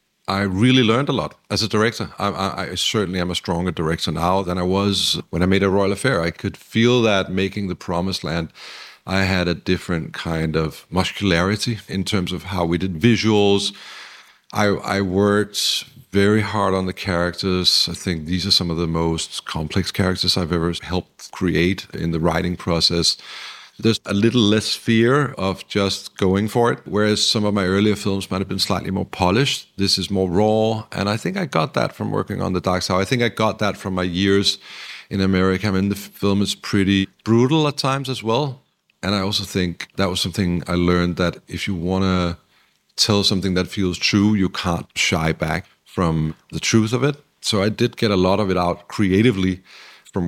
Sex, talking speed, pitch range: male, 205 wpm, 90-105 Hz